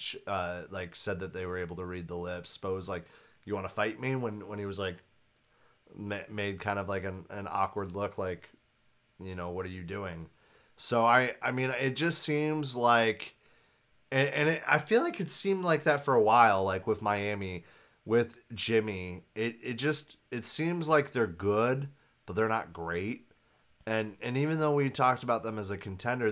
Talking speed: 200 wpm